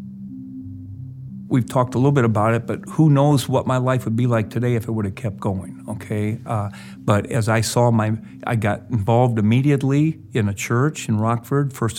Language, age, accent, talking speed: English, 50-69, American, 200 wpm